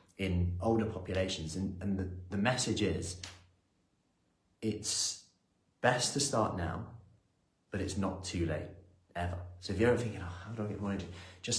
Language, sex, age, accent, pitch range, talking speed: English, male, 30-49, British, 90-110 Hz, 170 wpm